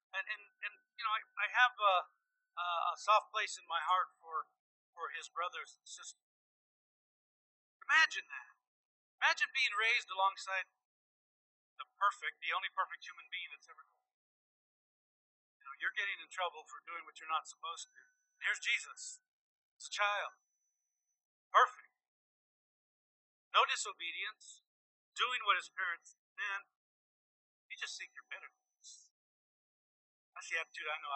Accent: American